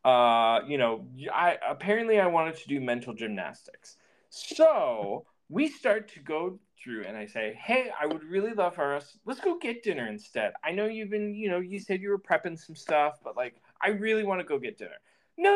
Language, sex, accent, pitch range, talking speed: English, male, American, 135-210 Hz, 210 wpm